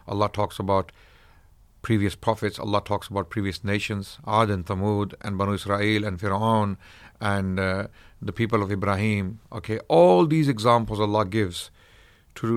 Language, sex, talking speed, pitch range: English, male, 145 wpm, 100-120 Hz